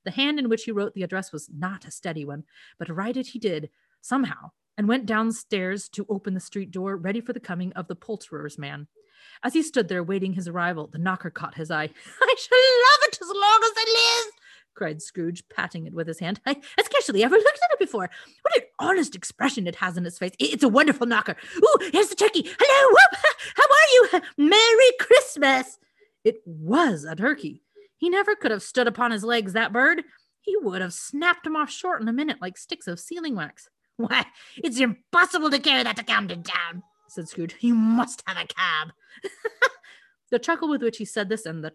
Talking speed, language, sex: 215 wpm, English, female